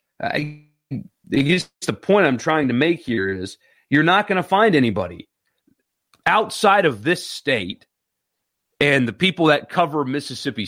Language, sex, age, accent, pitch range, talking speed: English, male, 40-59, American, 115-155 Hz, 150 wpm